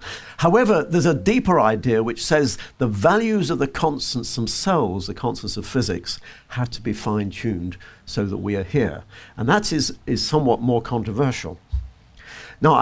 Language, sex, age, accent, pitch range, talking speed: English, male, 50-69, British, 100-140 Hz, 160 wpm